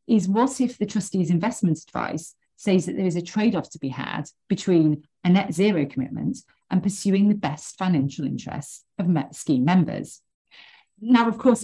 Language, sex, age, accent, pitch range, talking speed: English, female, 40-59, British, 150-200 Hz, 175 wpm